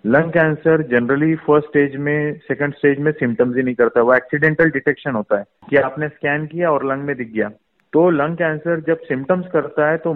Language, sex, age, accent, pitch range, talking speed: Hindi, male, 30-49, native, 120-150 Hz, 205 wpm